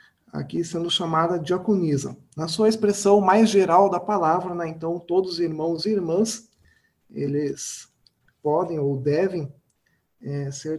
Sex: male